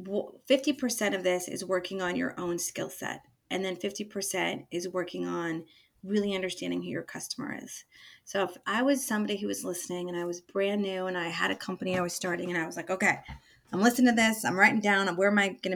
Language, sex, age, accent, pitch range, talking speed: English, female, 30-49, American, 185-250 Hz, 220 wpm